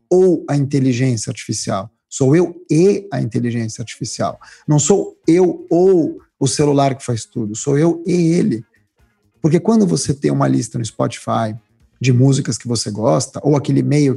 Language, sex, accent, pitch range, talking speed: Portuguese, male, Brazilian, 125-170 Hz, 165 wpm